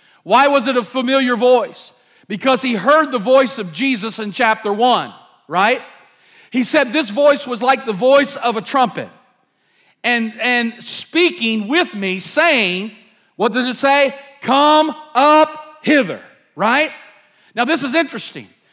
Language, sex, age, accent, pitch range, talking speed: English, male, 40-59, American, 225-280 Hz, 145 wpm